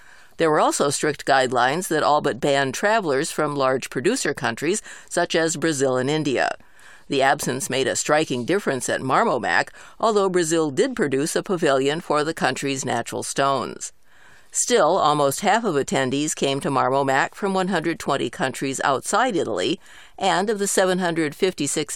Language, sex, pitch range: English, female, 135-175 Hz